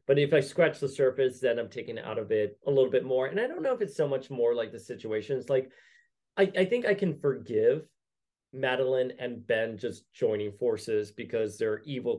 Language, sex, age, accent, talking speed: English, male, 30-49, American, 220 wpm